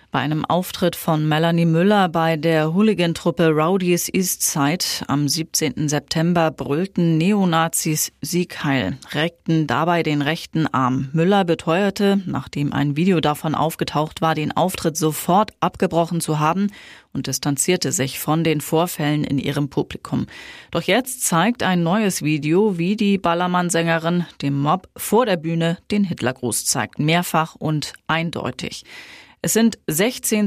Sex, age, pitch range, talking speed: female, 30-49, 150-180 Hz, 135 wpm